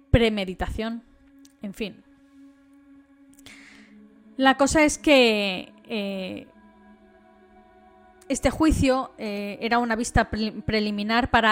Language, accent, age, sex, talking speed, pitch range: Spanish, Spanish, 10-29, female, 90 wpm, 210-270 Hz